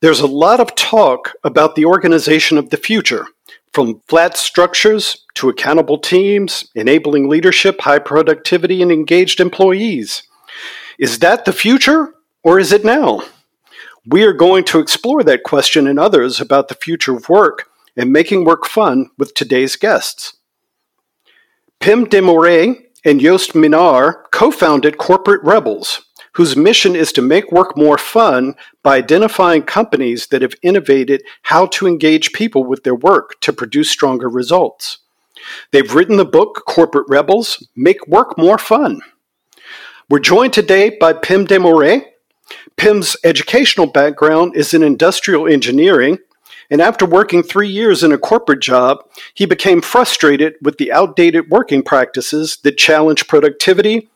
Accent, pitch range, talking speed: American, 155-230 Hz, 145 wpm